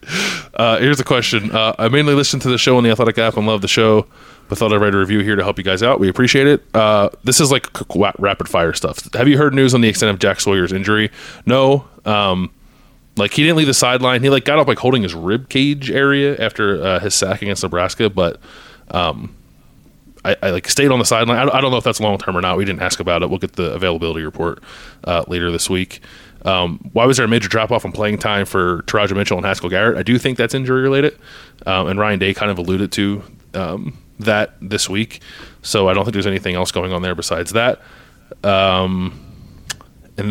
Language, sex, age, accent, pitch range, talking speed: English, male, 20-39, American, 95-125 Hz, 235 wpm